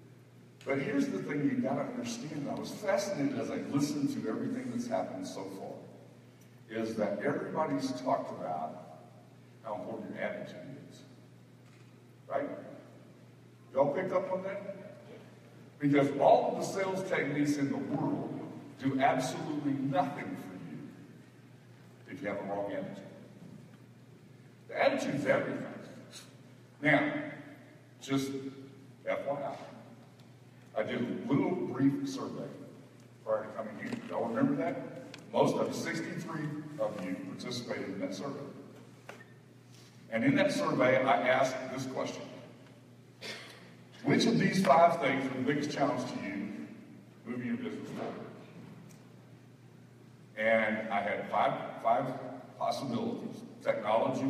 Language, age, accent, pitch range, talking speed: English, 60-79, American, 115-145 Hz, 125 wpm